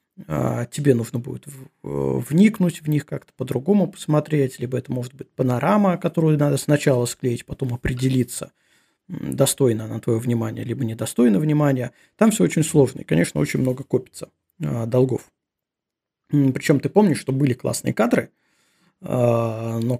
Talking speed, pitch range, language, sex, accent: 135 wpm, 125-155 Hz, Russian, male, native